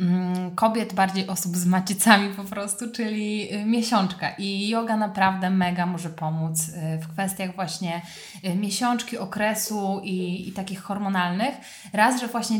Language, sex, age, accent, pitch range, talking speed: Polish, female, 20-39, native, 190-220 Hz, 130 wpm